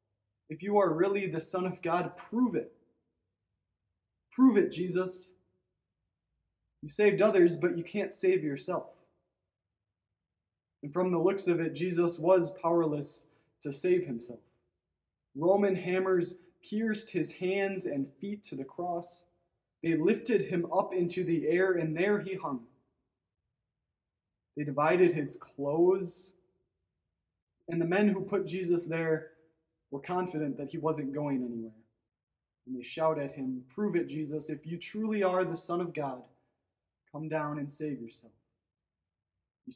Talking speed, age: 140 wpm, 20-39